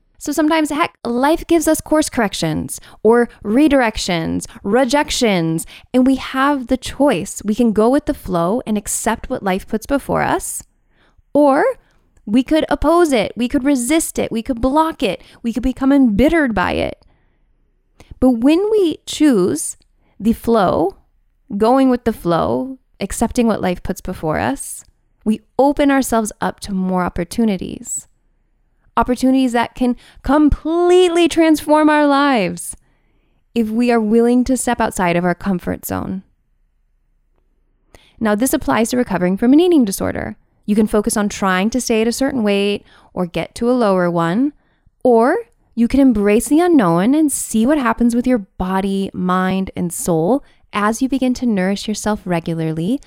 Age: 10-29